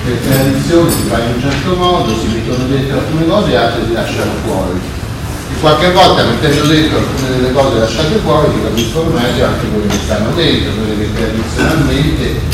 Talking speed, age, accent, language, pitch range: 185 wpm, 40-59, native, Italian, 110-145 Hz